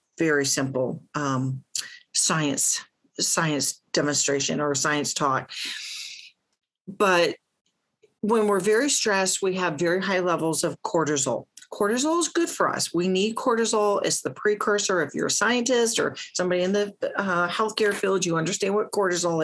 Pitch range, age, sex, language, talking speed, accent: 155-210 Hz, 40-59, female, English, 145 wpm, American